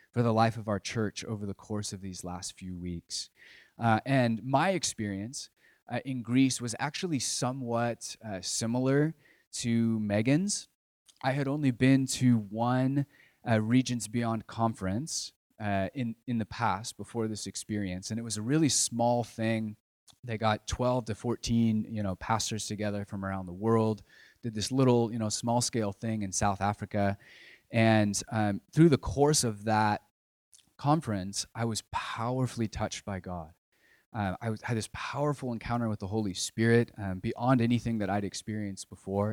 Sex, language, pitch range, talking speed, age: male, English, 105-125 Hz, 165 wpm, 20-39